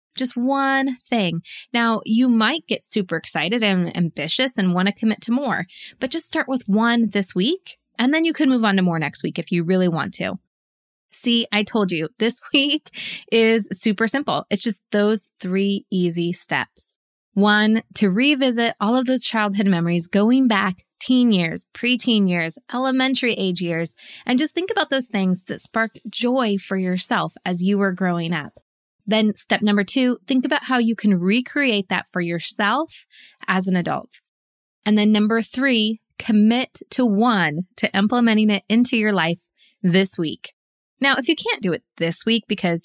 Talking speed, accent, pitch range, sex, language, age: 180 wpm, American, 190-250 Hz, female, English, 20-39